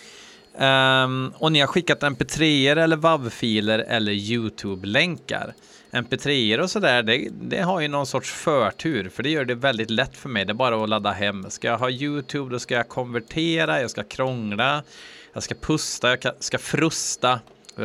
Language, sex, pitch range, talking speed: Swedish, male, 110-150 Hz, 175 wpm